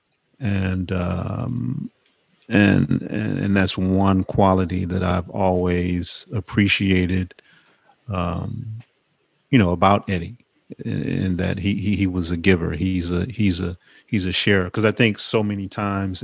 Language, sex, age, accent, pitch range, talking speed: English, male, 30-49, American, 95-115 Hz, 140 wpm